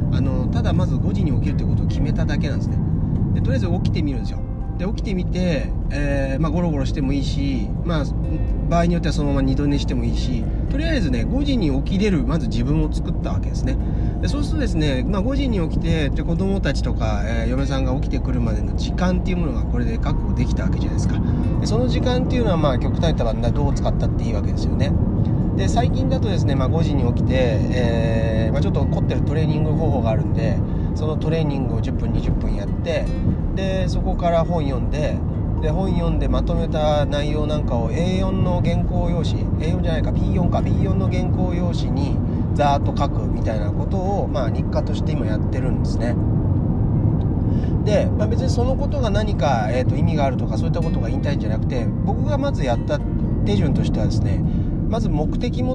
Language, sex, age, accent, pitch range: Japanese, male, 30-49, native, 90-115 Hz